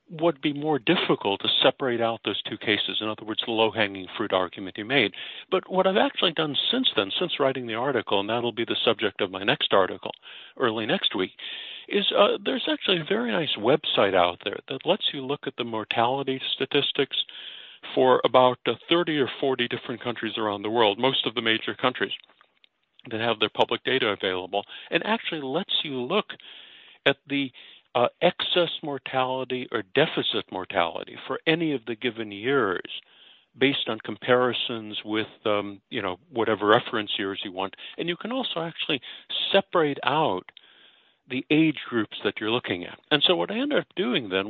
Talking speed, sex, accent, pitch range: 185 wpm, male, American, 110-155 Hz